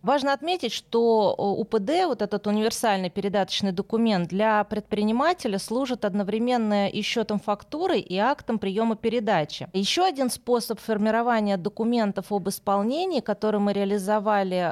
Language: Russian